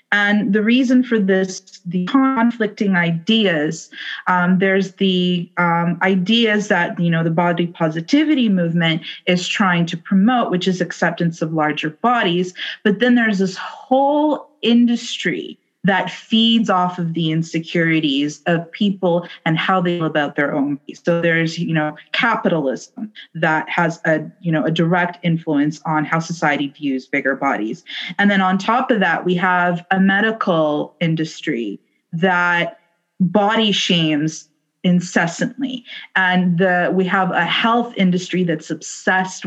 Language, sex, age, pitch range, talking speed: English, female, 30-49, 165-195 Hz, 145 wpm